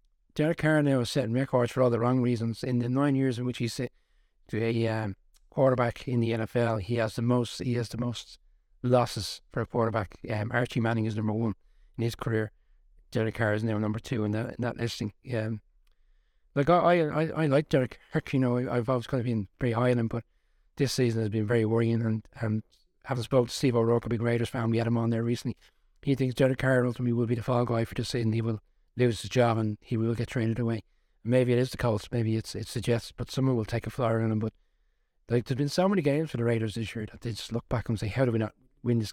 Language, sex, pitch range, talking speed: English, male, 110-125 Hz, 255 wpm